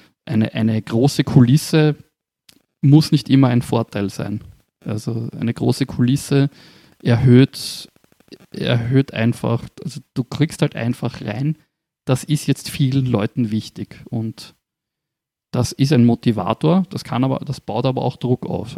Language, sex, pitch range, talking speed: German, male, 115-140 Hz, 135 wpm